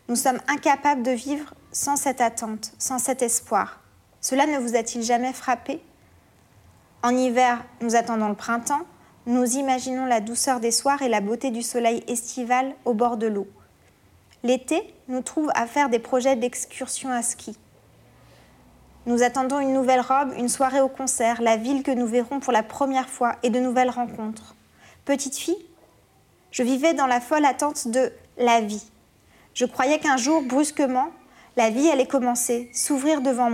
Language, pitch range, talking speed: French, 240-280 Hz, 170 wpm